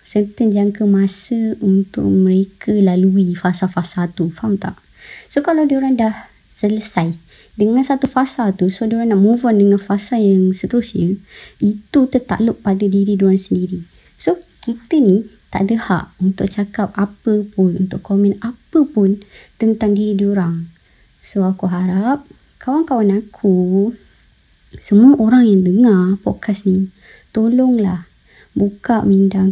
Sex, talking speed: male, 130 wpm